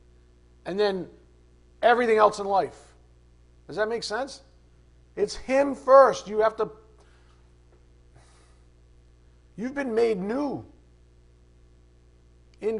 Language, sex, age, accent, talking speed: English, male, 50-69, American, 100 wpm